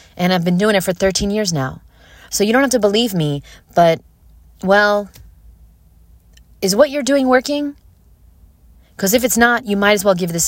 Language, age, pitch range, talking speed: English, 30-49, 135-190 Hz, 190 wpm